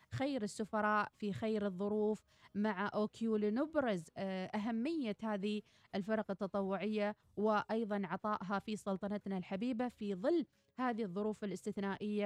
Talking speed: 110 wpm